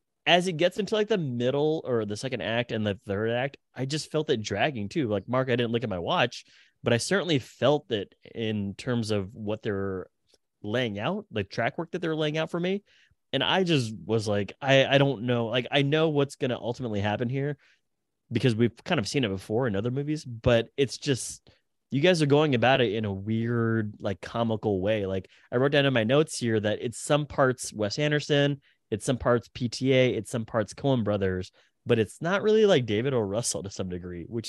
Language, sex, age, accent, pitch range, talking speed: English, male, 20-39, American, 105-140 Hz, 225 wpm